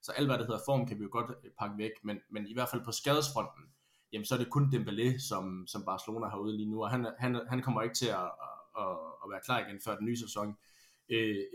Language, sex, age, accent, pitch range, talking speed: Danish, male, 20-39, native, 105-130 Hz, 265 wpm